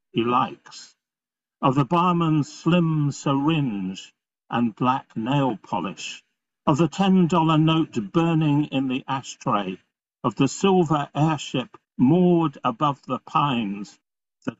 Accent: British